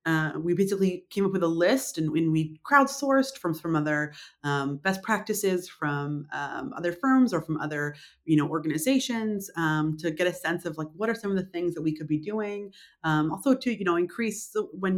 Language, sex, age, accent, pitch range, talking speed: English, female, 30-49, American, 150-185 Hz, 215 wpm